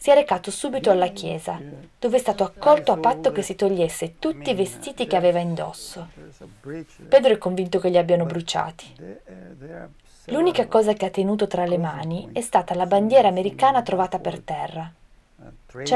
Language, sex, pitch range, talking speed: Italian, female, 175-230 Hz, 170 wpm